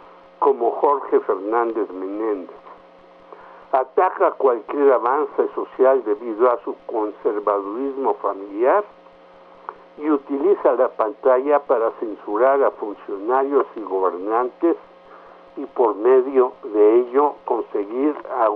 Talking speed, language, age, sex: 95 wpm, Spanish, 60-79, male